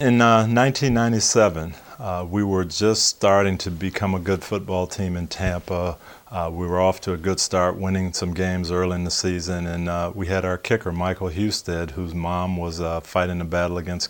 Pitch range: 85-95 Hz